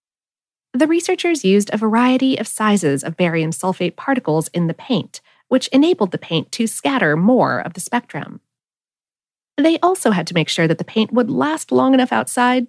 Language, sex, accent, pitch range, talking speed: English, female, American, 185-285 Hz, 180 wpm